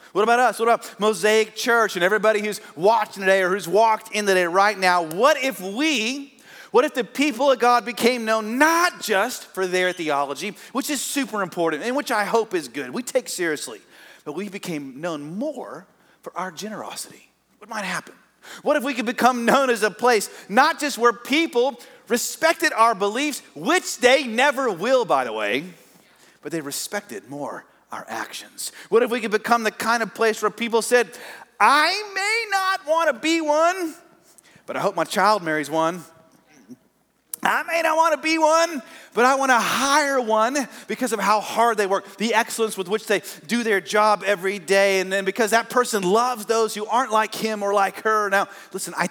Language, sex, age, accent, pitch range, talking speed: English, male, 40-59, American, 200-270 Hz, 195 wpm